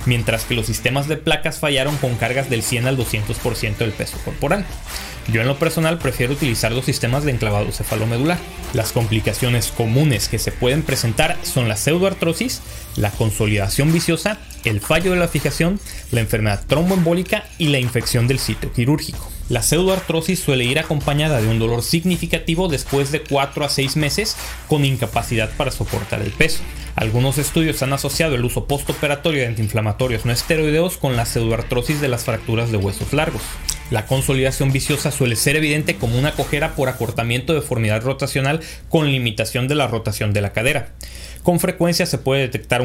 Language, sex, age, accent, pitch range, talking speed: Spanish, male, 30-49, Mexican, 115-155 Hz, 170 wpm